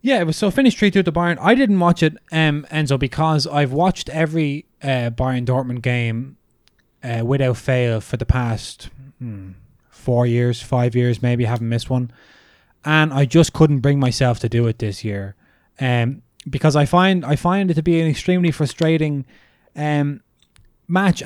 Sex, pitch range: male, 125-155 Hz